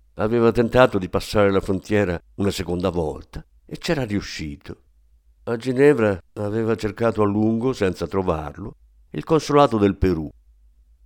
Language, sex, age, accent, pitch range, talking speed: Italian, male, 50-69, native, 85-115 Hz, 130 wpm